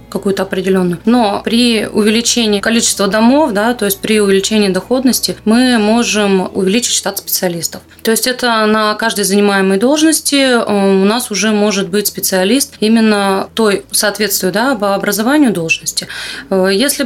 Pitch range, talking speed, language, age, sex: 195-235 Hz, 135 wpm, Russian, 20-39, female